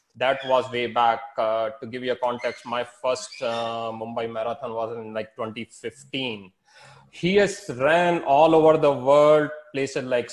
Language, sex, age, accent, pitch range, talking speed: English, male, 30-49, Indian, 125-155 Hz, 165 wpm